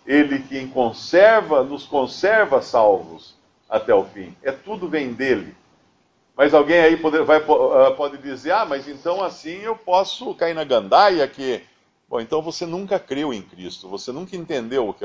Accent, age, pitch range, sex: Brazilian, 50-69, 120-175 Hz, male